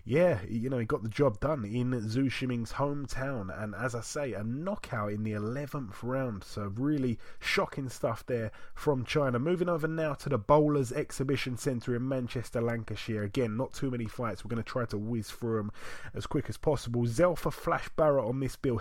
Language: English